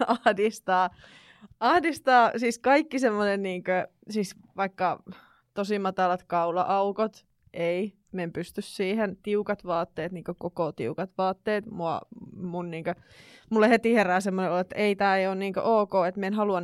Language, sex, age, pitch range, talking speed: Finnish, female, 20-39, 175-220 Hz, 150 wpm